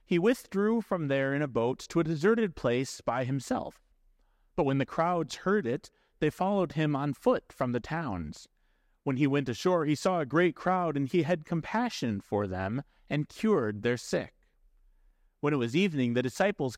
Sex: male